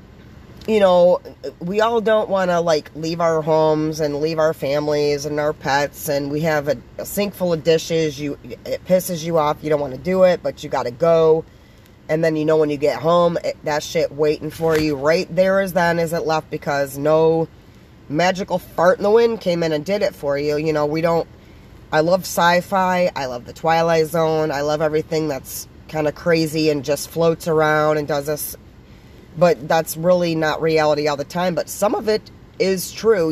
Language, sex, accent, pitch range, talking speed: English, female, American, 150-180 Hz, 210 wpm